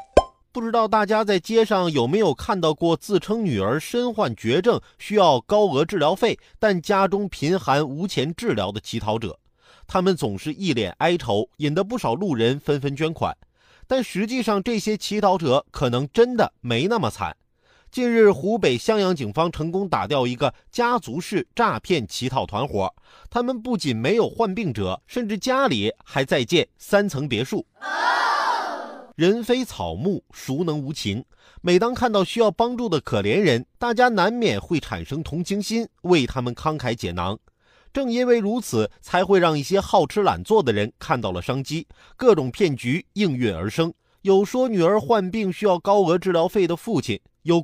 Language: Chinese